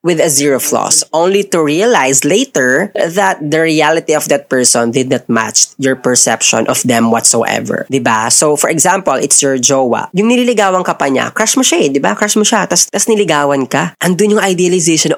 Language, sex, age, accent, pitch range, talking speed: Filipino, female, 20-39, native, 130-180 Hz, 185 wpm